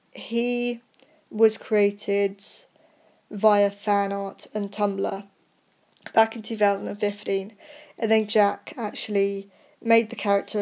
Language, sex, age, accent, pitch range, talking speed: English, female, 10-29, British, 195-220 Hz, 100 wpm